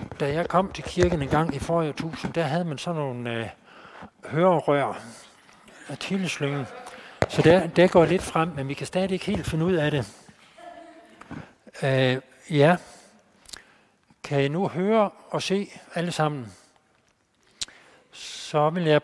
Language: Danish